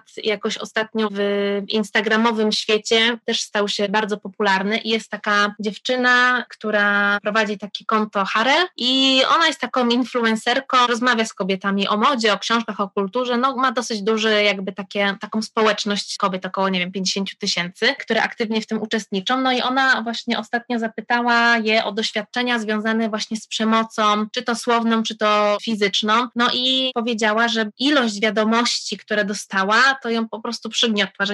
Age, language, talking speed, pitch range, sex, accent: 20-39, Polish, 165 wpm, 210-235 Hz, female, native